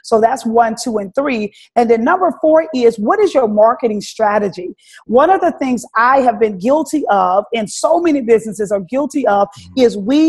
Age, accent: 30-49, American